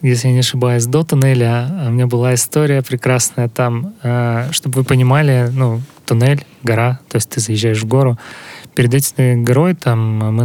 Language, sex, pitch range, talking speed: Russian, male, 120-150 Hz, 165 wpm